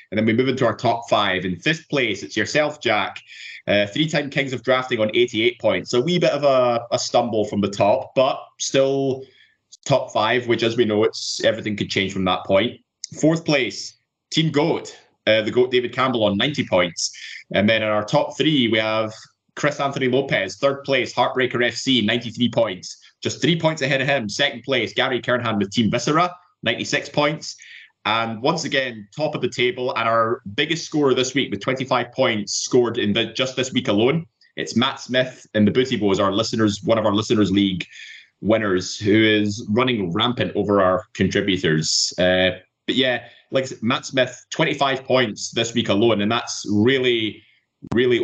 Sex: male